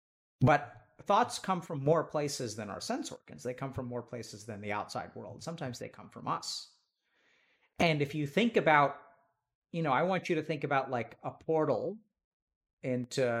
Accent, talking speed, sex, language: American, 185 wpm, male, English